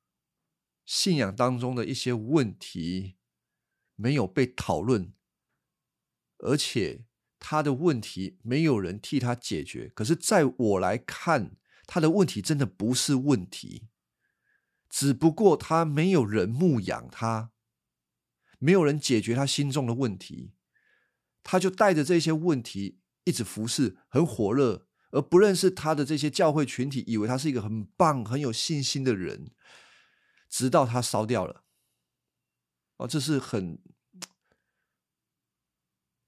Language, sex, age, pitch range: Chinese, male, 50-69, 105-145 Hz